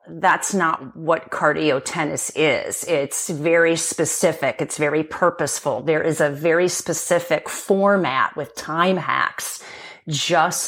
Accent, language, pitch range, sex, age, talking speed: American, English, 155-195 Hz, female, 40-59, 125 wpm